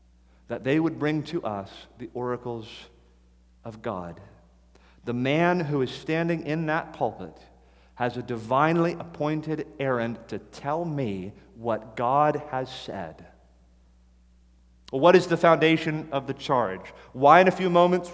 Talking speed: 140 wpm